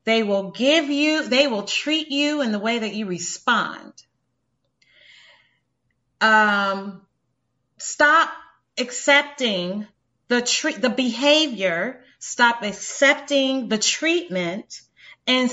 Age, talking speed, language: 30-49, 95 wpm, English